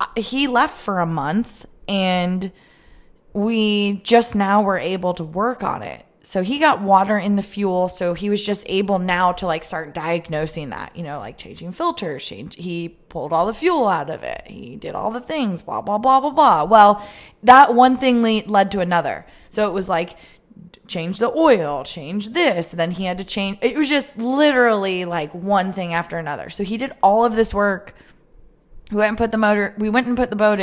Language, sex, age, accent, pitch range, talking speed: English, female, 20-39, American, 180-225 Hz, 210 wpm